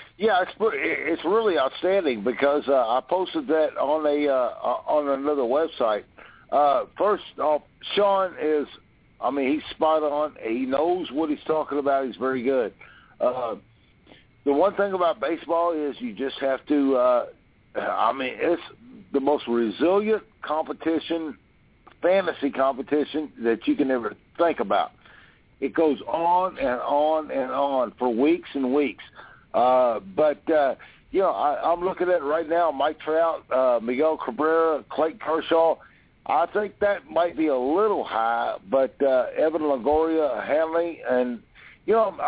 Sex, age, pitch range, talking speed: male, 50-69, 135-185 Hz, 150 wpm